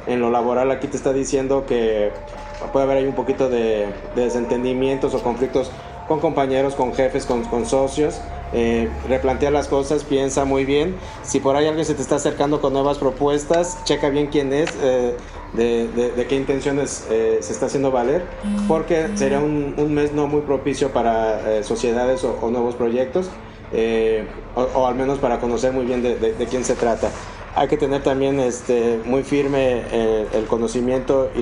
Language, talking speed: Spanish, 190 wpm